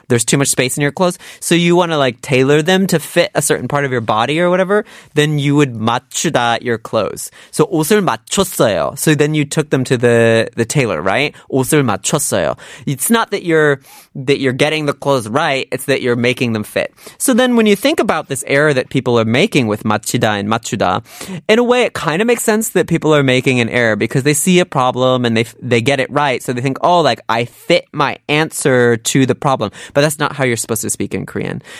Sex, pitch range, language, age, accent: male, 120-155 Hz, Korean, 20-39, American